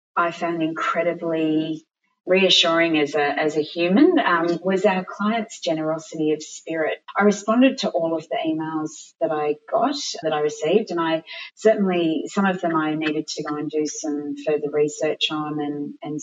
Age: 30-49